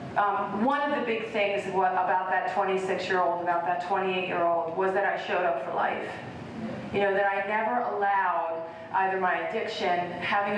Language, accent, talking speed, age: English, American, 165 wpm, 30-49